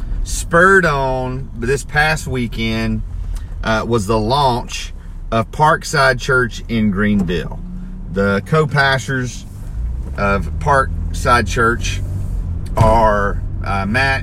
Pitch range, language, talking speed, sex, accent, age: 90-125 Hz, English, 95 wpm, male, American, 40-59